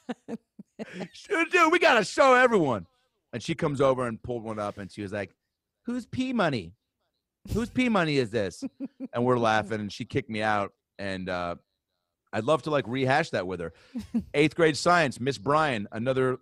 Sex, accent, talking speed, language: male, American, 185 wpm, English